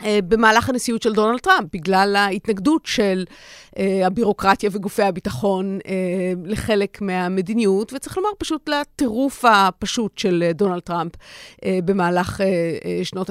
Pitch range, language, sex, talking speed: 190-240 Hz, Hebrew, female, 105 wpm